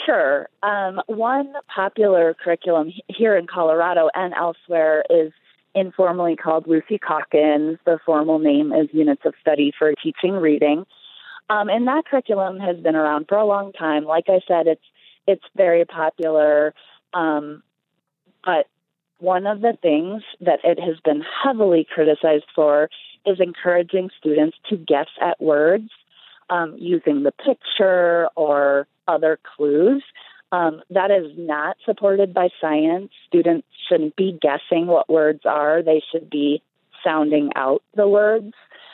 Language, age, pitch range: English, 30-49, 155-200 Hz